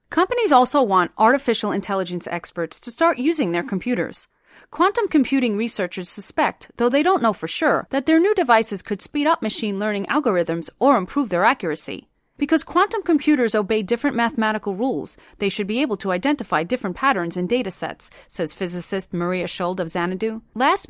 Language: English